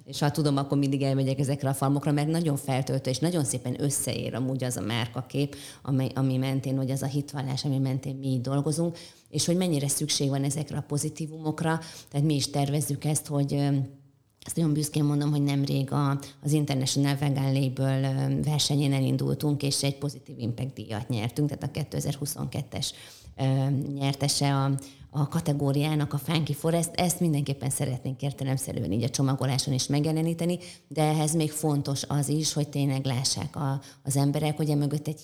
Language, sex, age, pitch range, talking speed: Hungarian, female, 30-49, 135-150 Hz, 165 wpm